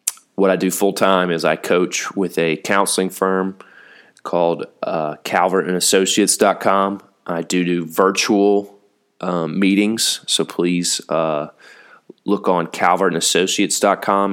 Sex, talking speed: male, 110 wpm